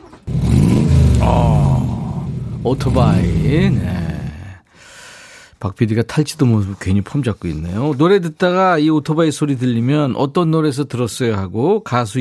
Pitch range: 100-160 Hz